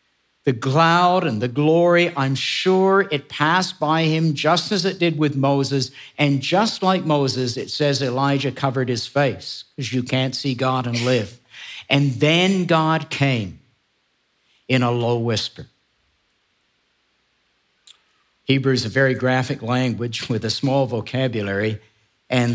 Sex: male